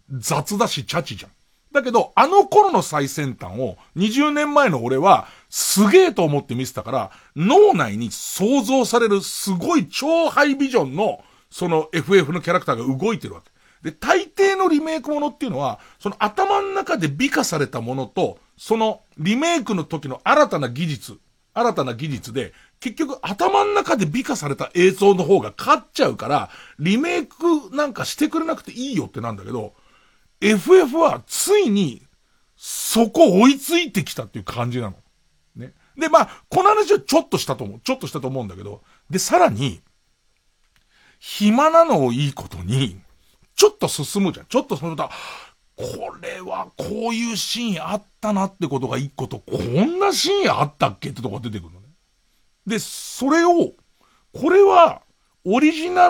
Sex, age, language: male, 40-59, Japanese